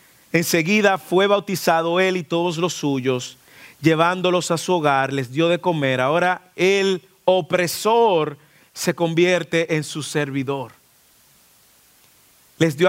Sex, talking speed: male, 120 wpm